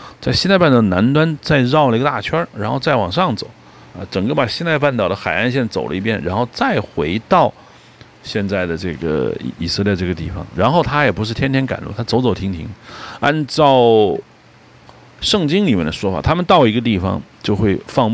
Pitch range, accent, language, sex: 95-125 Hz, native, Chinese, male